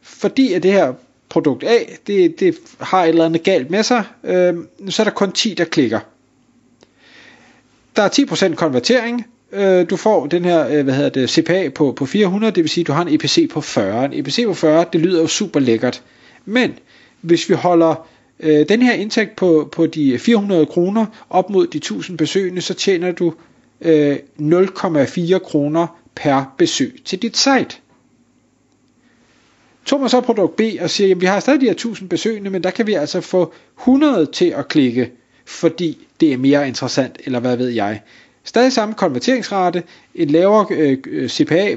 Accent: native